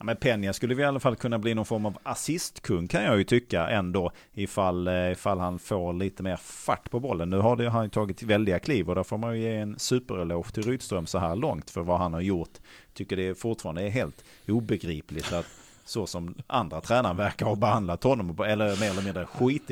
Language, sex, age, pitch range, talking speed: Swedish, male, 30-49, 90-115 Hz, 225 wpm